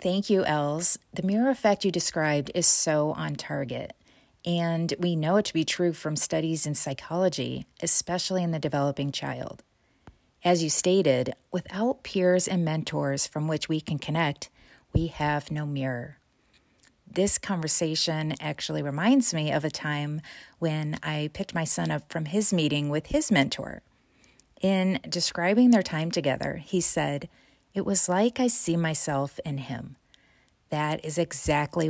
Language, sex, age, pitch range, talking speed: English, female, 30-49, 150-185 Hz, 155 wpm